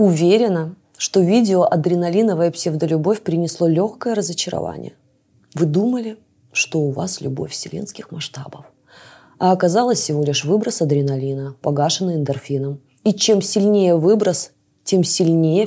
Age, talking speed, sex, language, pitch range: 20-39, 115 wpm, female, Russian, 155-205 Hz